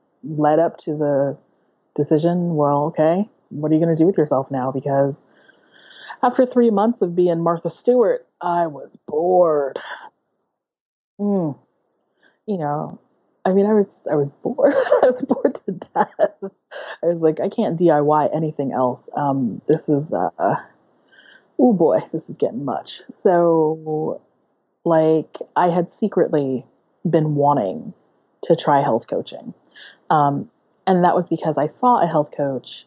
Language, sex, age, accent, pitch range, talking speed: English, female, 30-49, American, 150-195 Hz, 145 wpm